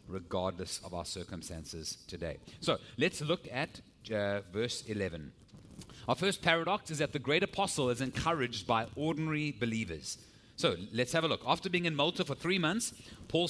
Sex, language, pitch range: male, English, 120-175 Hz